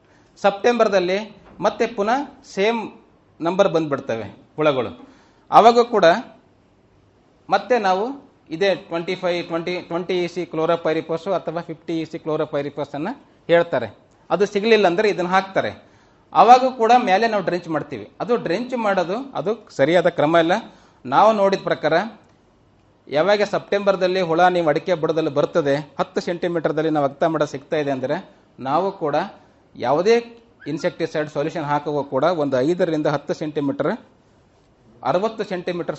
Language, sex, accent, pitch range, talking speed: Kannada, male, native, 155-195 Hz, 125 wpm